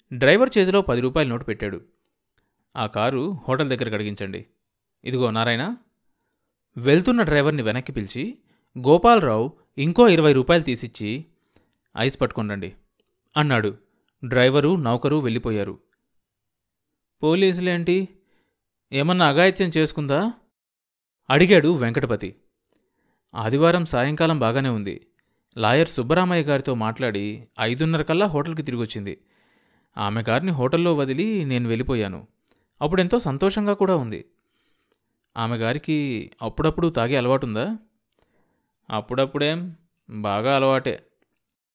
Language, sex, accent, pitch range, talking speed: Telugu, male, native, 110-165 Hz, 90 wpm